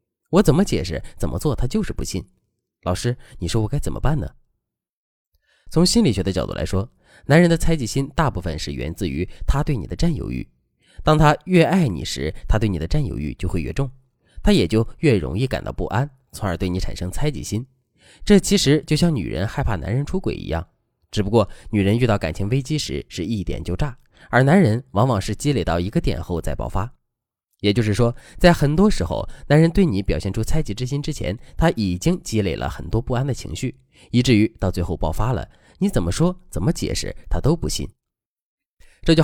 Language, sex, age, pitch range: Chinese, male, 20-39, 95-145 Hz